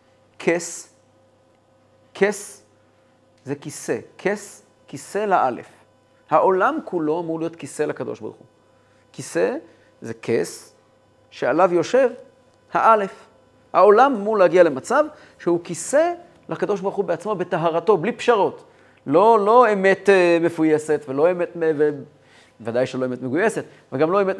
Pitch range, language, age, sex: 125-175 Hz, Hebrew, 40-59, male